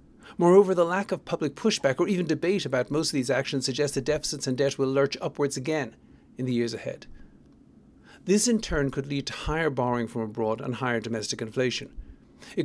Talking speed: 200 wpm